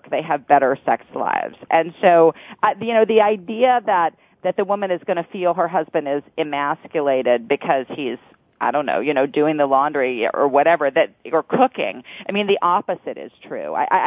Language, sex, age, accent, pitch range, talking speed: English, female, 40-59, American, 150-195 Hz, 195 wpm